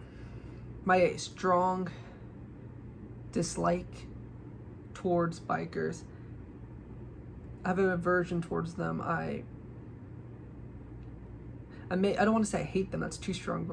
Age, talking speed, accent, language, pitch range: 20-39, 115 wpm, American, English, 165-185 Hz